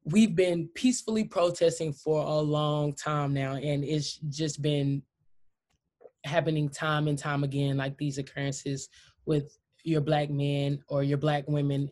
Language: English